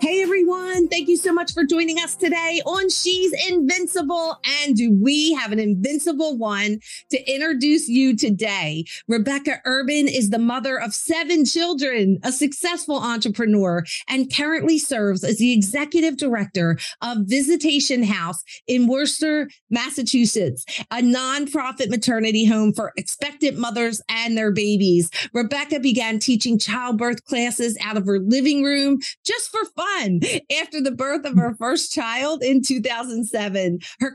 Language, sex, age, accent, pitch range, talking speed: English, female, 40-59, American, 220-295 Hz, 140 wpm